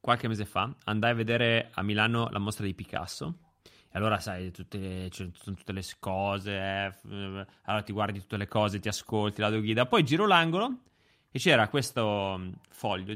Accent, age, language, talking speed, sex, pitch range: native, 30-49, Italian, 180 wpm, male, 100-135 Hz